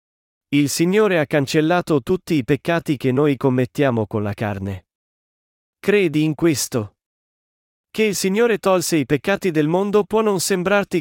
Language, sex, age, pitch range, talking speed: Italian, male, 40-59, 125-175 Hz, 145 wpm